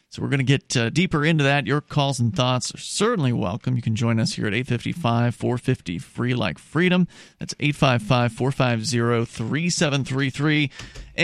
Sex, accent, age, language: male, American, 40-59, English